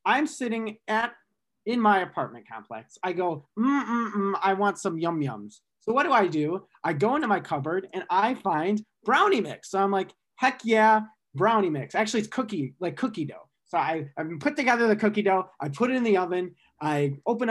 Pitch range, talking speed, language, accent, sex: 190-265 Hz, 205 wpm, English, American, male